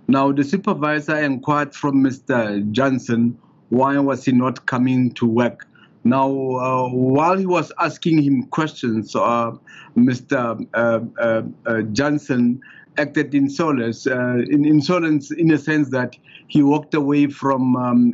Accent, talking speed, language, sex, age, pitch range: South African, 145 wpm, English, male, 50-69, 125-150 Hz